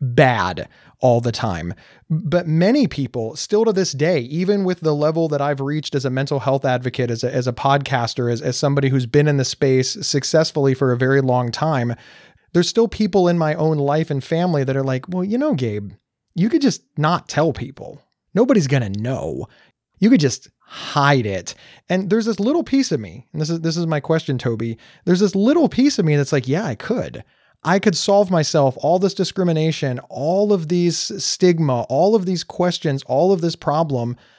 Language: English